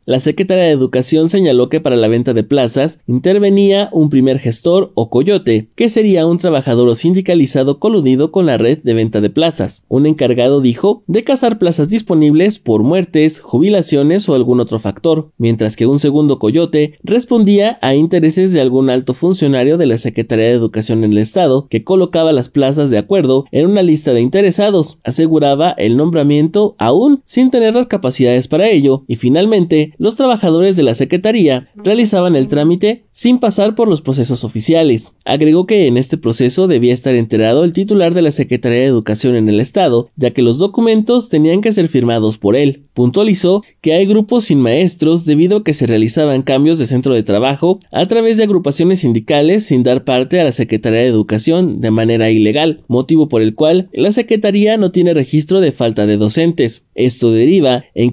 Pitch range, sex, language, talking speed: 125-185 Hz, male, Spanish, 185 wpm